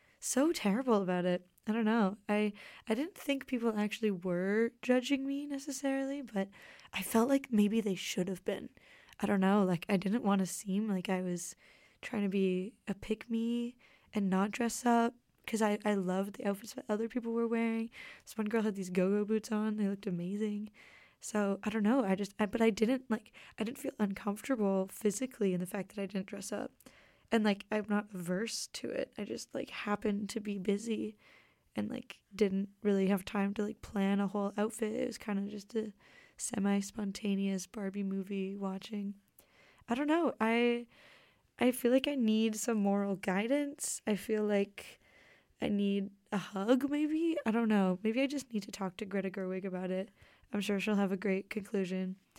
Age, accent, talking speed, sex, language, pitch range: 20-39, American, 195 wpm, female, English, 195-230 Hz